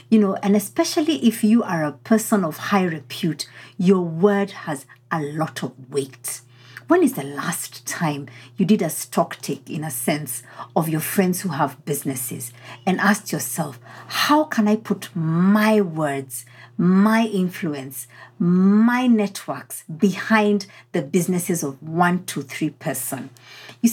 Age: 50-69